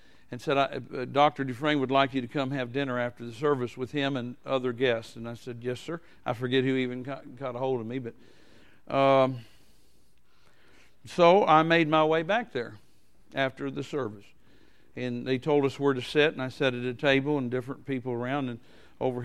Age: 50-69